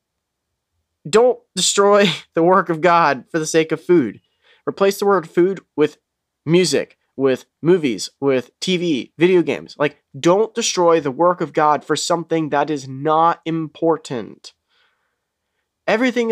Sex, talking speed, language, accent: male, 135 wpm, English, American